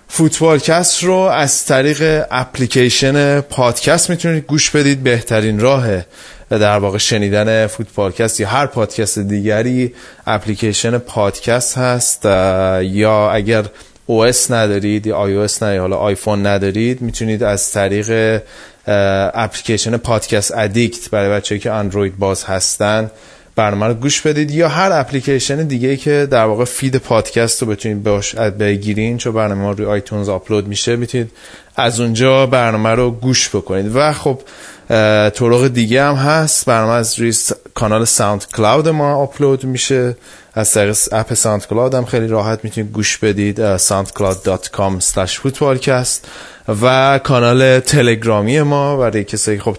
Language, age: Persian, 20-39